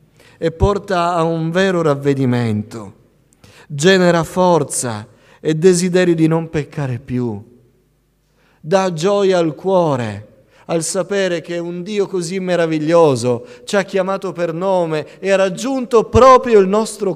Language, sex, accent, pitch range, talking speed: Italian, male, native, 115-170 Hz, 125 wpm